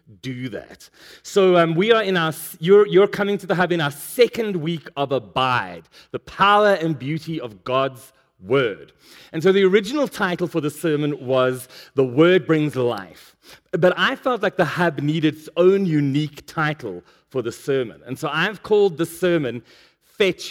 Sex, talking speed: male, 180 wpm